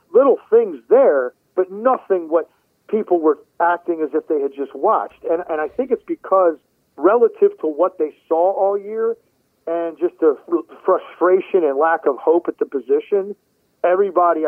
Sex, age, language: male, 40-59, English